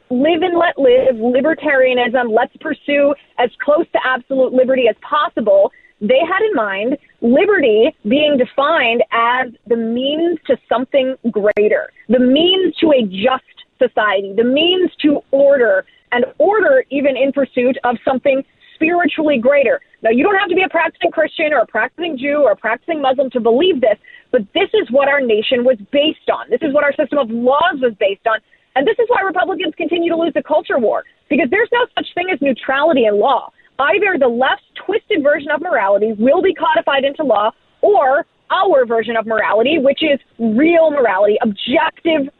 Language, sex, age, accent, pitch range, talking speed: English, female, 30-49, American, 240-320 Hz, 180 wpm